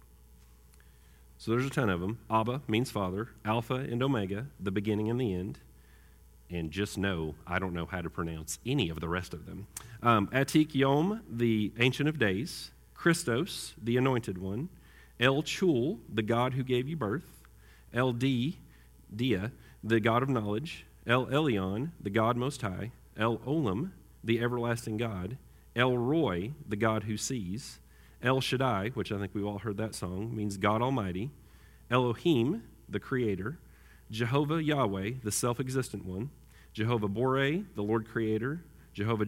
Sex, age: male, 40-59